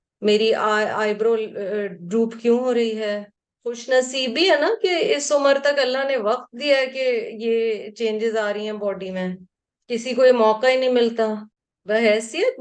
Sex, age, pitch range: female, 30-49, 220-300 Hz